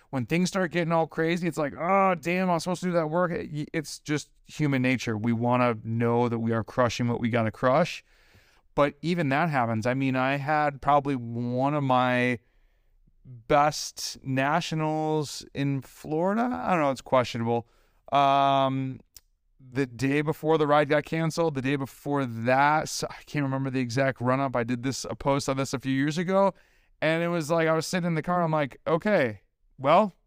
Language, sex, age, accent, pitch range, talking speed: English, male, 30-49, American, 125-155 Hz, 195 wpm